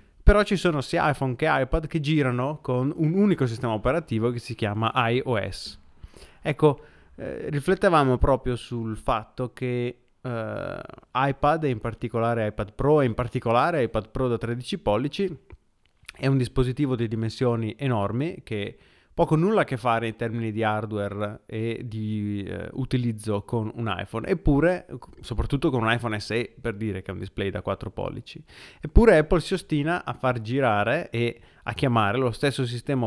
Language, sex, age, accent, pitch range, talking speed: Italian, male, 30-49, native, 110-140 Hz, 165 wpm